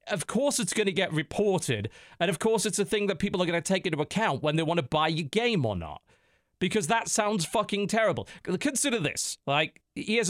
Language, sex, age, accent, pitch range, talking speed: English, male, 40-59, British, 145-190 Hz, 225 wpm